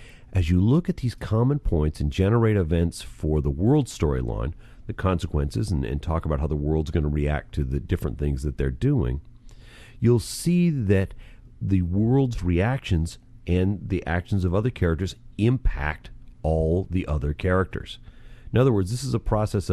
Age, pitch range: 40-59, 85-115 Hz